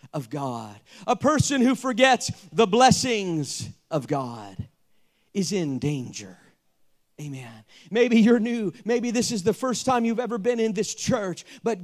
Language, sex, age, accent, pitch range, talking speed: English, male, 40-59, American, 175-255 Hz, 150 wpm